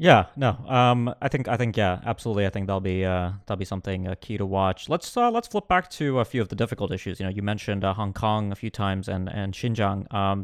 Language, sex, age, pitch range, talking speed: English, male, 20-39, 100-115 Hz, 270 wpm